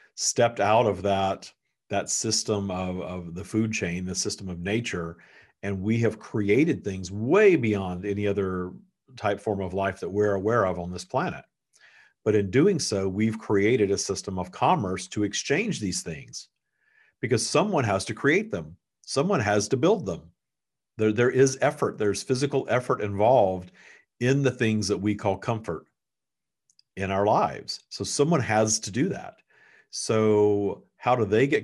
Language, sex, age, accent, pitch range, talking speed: English, male, 50-69, American, 95-110 Hz, 170 wpm